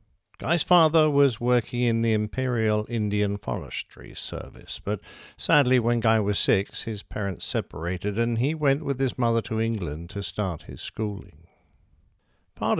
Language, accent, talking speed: English, British, 150 wpm